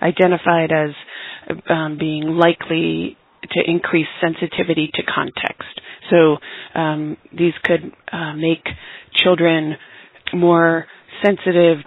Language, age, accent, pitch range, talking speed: English, 30-49, American, 155-175 Hz, 95 wpm